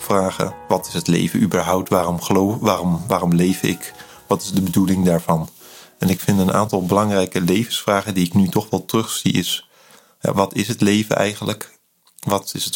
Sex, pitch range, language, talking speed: male, 90-100 Hz, Dutch, 185 wpm